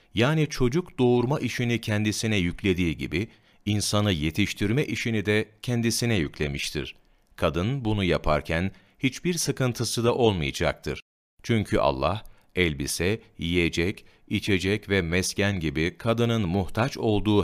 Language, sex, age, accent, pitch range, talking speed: Turkish, male, 40-59, native, 85-115 Hz, 105 wpm